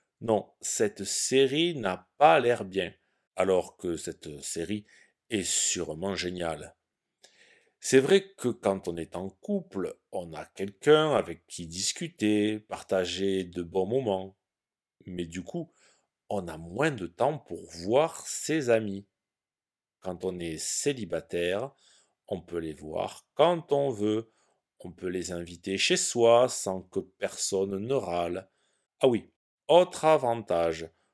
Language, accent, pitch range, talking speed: French, French, 90-125 Hz, 135 wpm